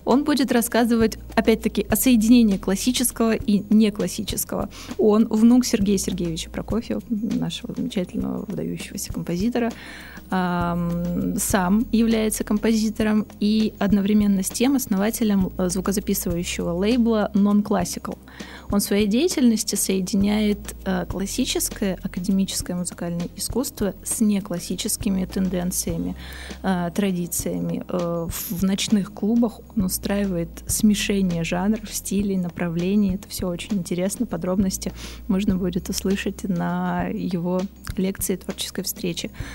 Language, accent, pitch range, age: Russian, native, 185-220 Hz, 20-39